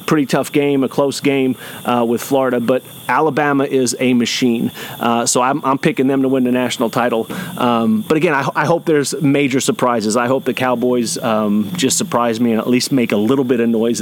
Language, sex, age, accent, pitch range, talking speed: English, male, 30-49, American, 115-135 Hz, 220 wpm